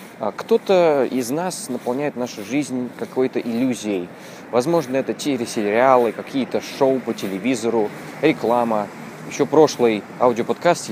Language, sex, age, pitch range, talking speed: Russian, male, 20-39, 105-140 Hz, 110 wpm